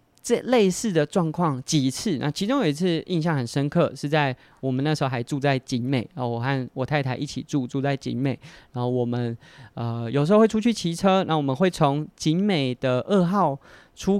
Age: 20-39